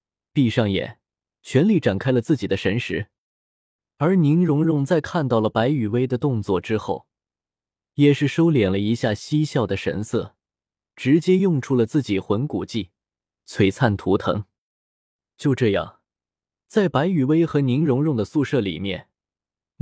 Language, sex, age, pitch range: Chinese, male, 20-39, 110-160 Hz